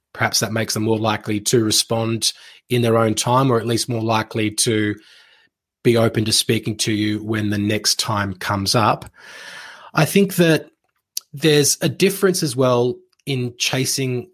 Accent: Australian